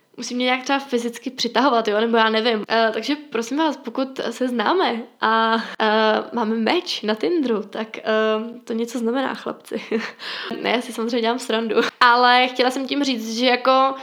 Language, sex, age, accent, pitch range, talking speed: Czech, female, 10-29, native, 225-255 Hz, 180 wpm